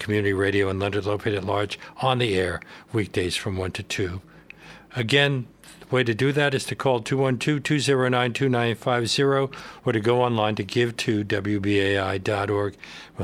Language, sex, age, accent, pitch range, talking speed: English, male, 50-69, American, 105-140 Hz, 165 wpm